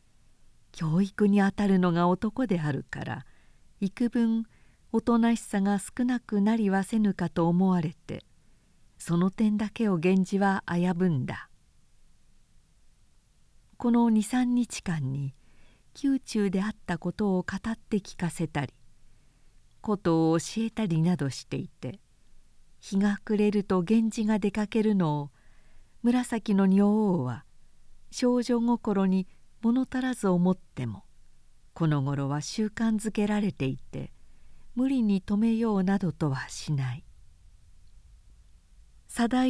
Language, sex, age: Japanese, female, 50-69